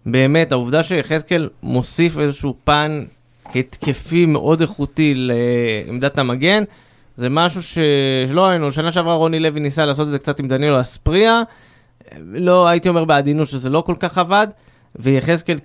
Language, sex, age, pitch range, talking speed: Hebrew, male, 20-39, 130-170 Hz, 140 wpm